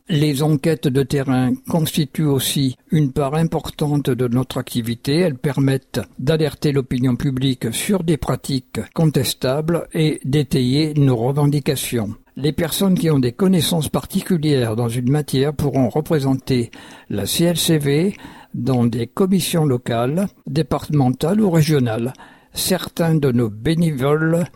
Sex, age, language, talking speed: male, 60-79, French, 120 wpm